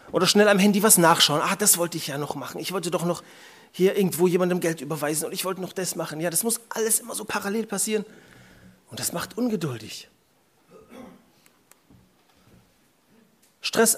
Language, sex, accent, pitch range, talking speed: German, male, German, 140-200 Hz, 175 wpm